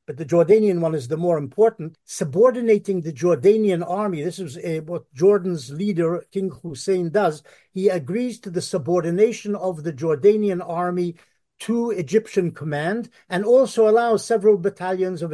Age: 60-79